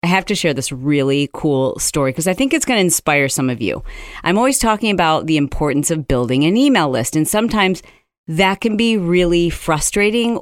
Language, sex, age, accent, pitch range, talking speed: English, female, 40-59, American, 145-200 Hz, 205 wpm